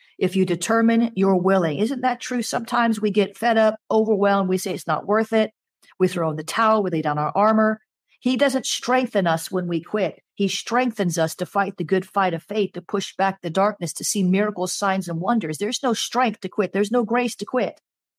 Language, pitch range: English, 185-230 Hz